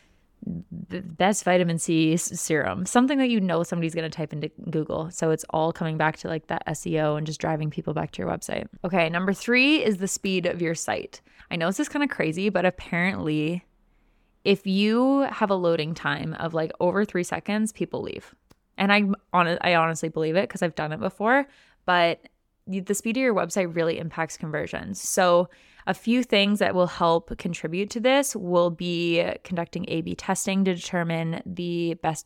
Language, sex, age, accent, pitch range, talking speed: English, female, 20-39, American, 160-190 Hz, 190 wpm